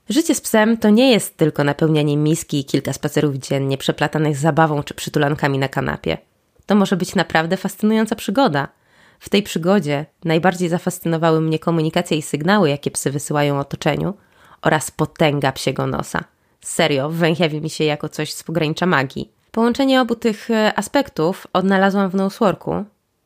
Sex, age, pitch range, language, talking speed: female, 20-39, 150-190 Hz, Polish, 150 wpm